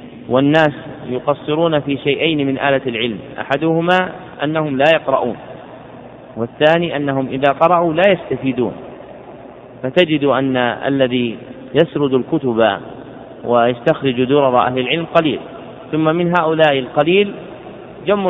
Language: Arabic